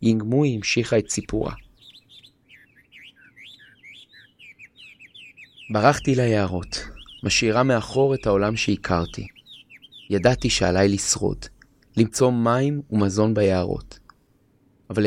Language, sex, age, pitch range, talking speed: Hebrew, male, 30-49, 100-125 Hz, 75 wpm